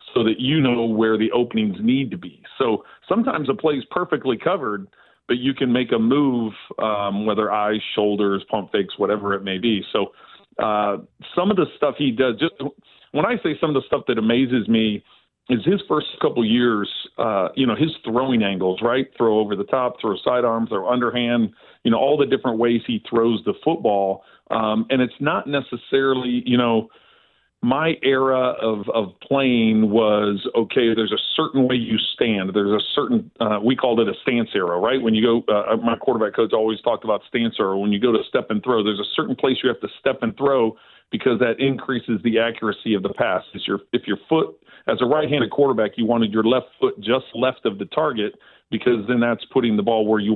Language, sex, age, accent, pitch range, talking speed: English, male, 40-59, American, 110-130 Hz, 210 wpm